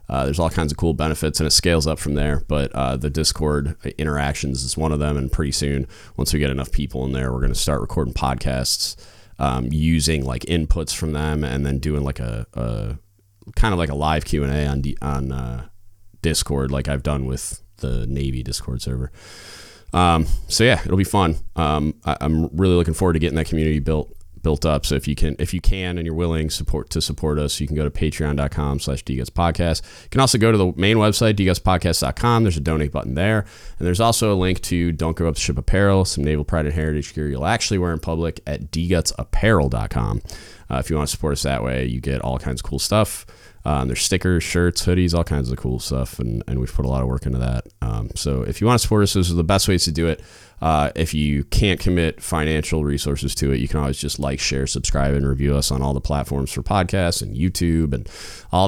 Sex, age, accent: male, 30-49, American